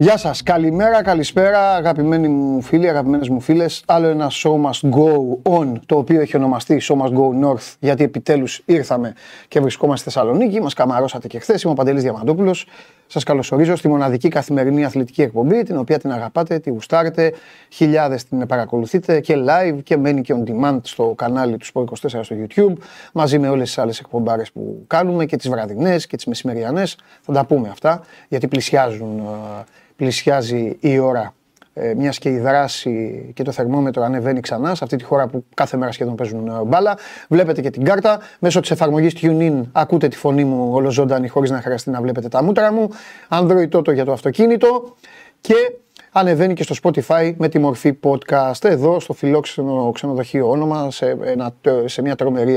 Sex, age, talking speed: male, 30-49, 175 wpm